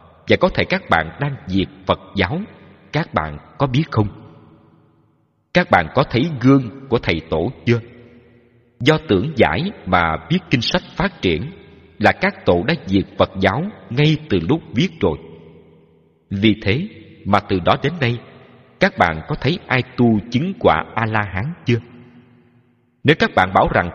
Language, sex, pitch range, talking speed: Vietnamese, male, 90-140 Hz, 170 wpm